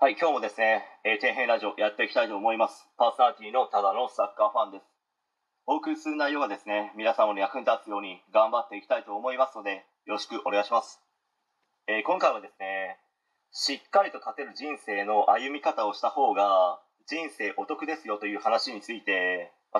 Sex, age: male, 30-49